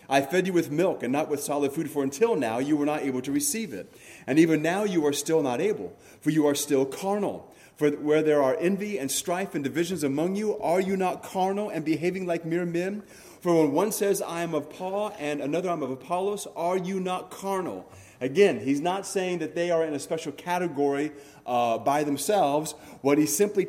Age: 30-49